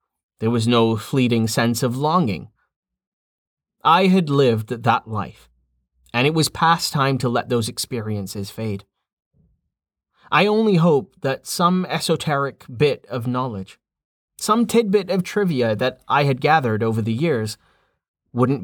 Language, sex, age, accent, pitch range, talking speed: English, male, 30-49, American, 110-165 Hz, 140 wpm